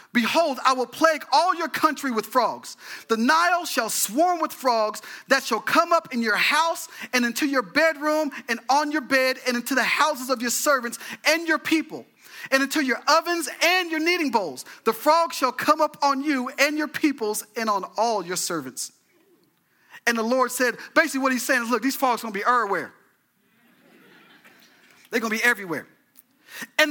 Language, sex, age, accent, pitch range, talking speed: English, male, 40-59, American, 215-295 Hz, 190 wpm